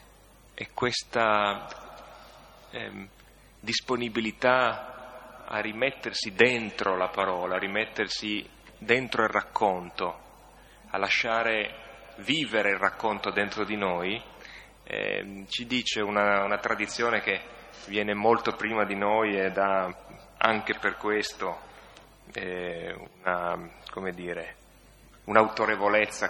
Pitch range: 95-110 Hz